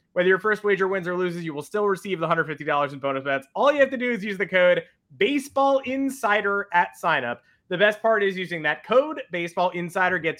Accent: American